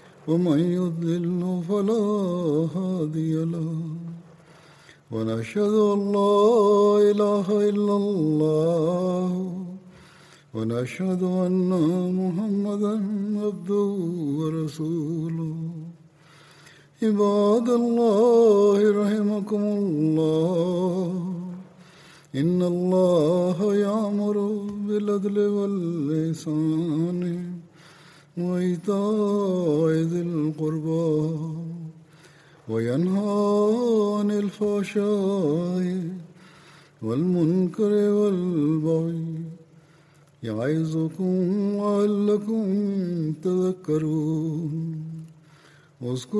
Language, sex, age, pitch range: Malayalam, male, 50-69, 160-205 Hz